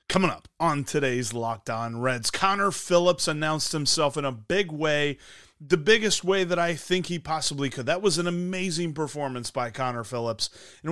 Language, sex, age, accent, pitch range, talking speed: English, male, 30-49, American, 130-185 Hz, 180 wpm